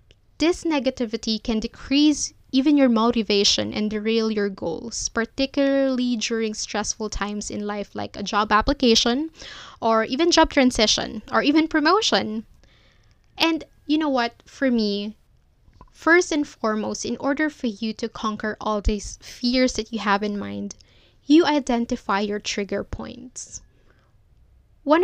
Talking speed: 135 wpm